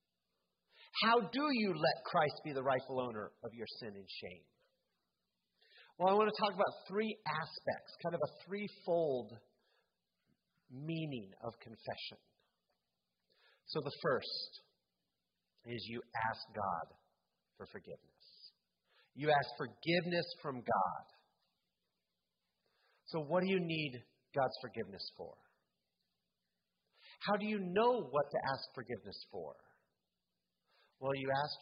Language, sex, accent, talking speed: English, male, American, 120 wpm